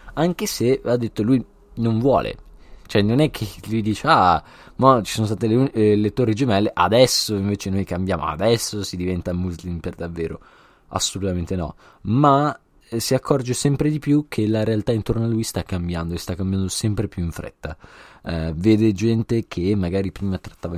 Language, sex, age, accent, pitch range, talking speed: Italian, male, 20-39, native, 85-110 Hz, 185 wpm